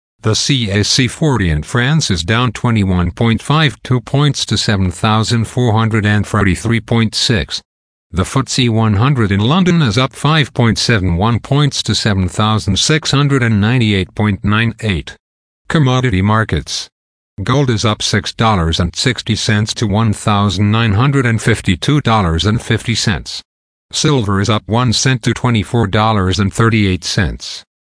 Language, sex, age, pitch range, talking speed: English, male, 50-69, 95-120 Hz, 80 wpm